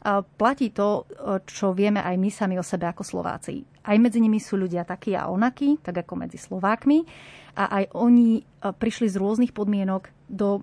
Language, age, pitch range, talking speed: Slovak, 30-49, 185-215 Hz, 175 wpm